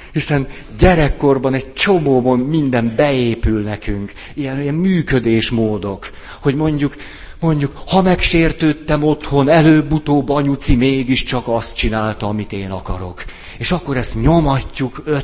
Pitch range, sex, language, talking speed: 100-150 Hz, male, Hungarian, 110 wpm